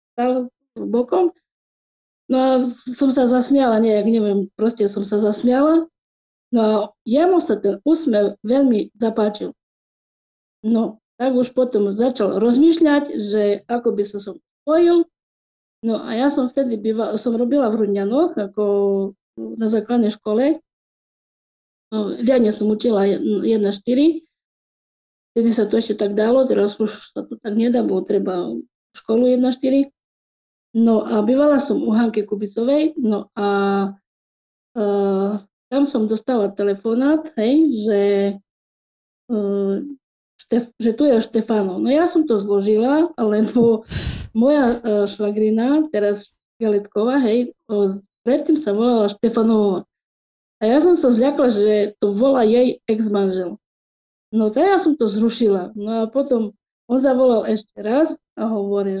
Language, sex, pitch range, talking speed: Slovak, female, 205-255 Hz, 135 wpm